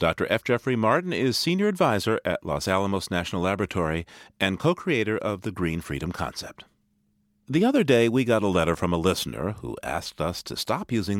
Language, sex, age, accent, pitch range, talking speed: English, male, 40-59, American, 95-140 Hz, 190 wpm